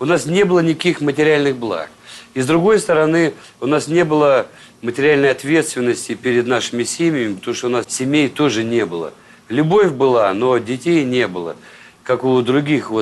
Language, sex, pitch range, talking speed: Russian, male, 120-155 Hz, 170 wpm